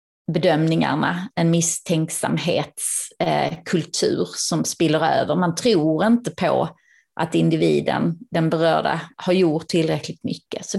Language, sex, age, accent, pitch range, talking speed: Swedish, female, 30-49, native, 155-180 Hz, 110 wpm